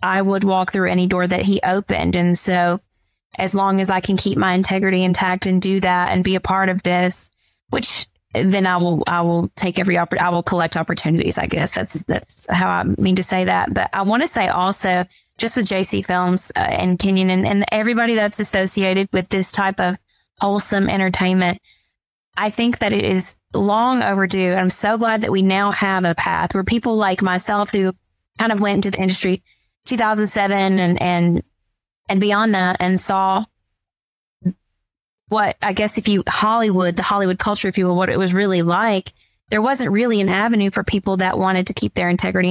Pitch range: 180-205 Hz